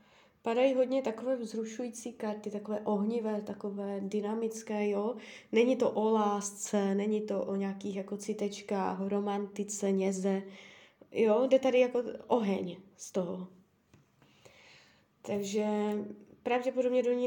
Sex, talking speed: female, 115 wpm